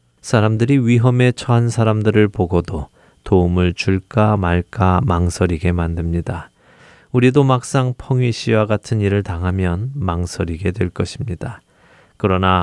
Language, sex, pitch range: Korean, male, 90-125 Hz